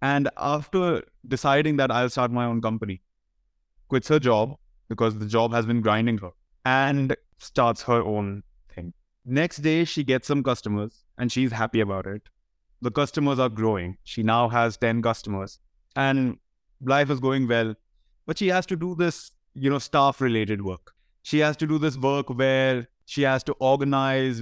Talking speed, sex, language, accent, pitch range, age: 170 wpm, male, English, Indian, 110-145 Hz, 20-39